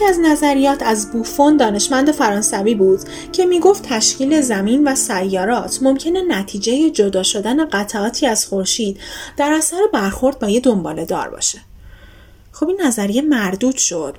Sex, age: female, 10-29